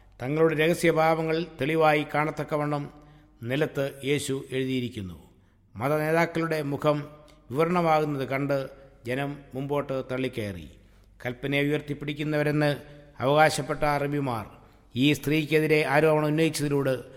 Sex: male